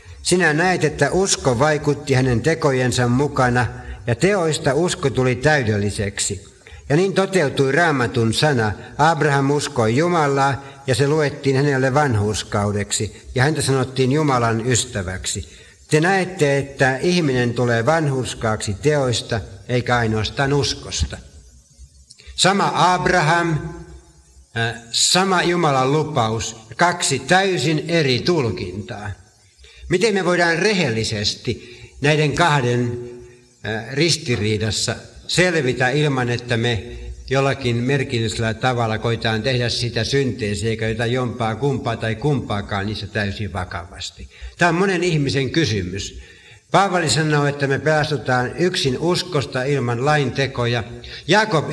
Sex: male